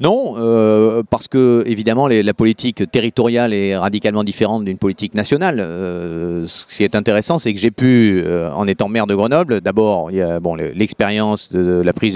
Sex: male